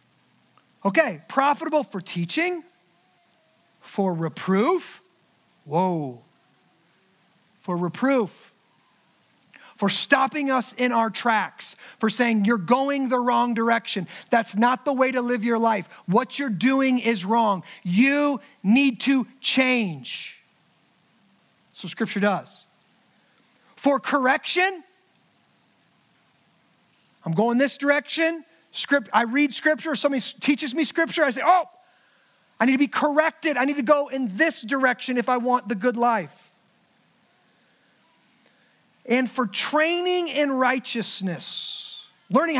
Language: English